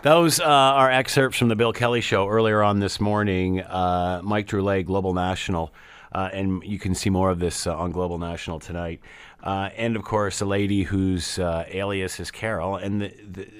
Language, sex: English, male